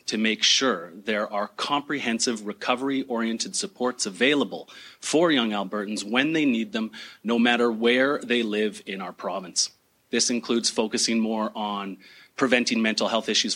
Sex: male